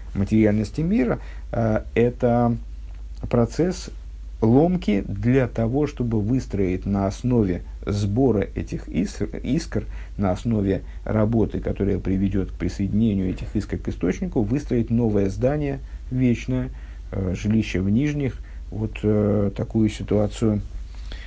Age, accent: 50-69, native